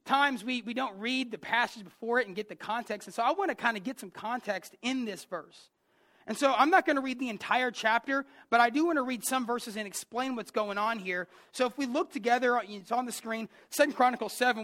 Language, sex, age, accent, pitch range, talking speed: English, male, 30-49, American, 225-275 Hz, 255 wpm